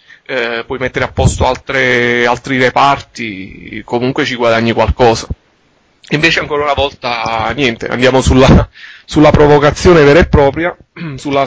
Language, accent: Italian, native